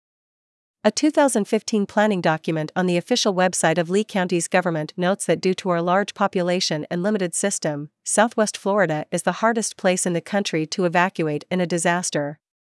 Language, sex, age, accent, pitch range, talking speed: English, female, 40-59, American, 170-200 Hz, 170 wpm